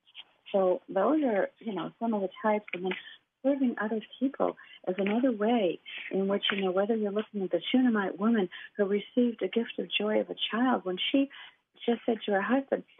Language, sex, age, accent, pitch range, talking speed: English, female, 50-69, American, 185-230 Hz, 205 wpm